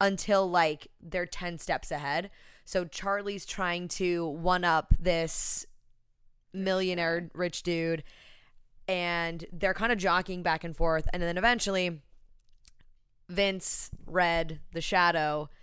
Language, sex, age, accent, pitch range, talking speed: English, female, 20-39, American, 150-175 Hz, 115 wpm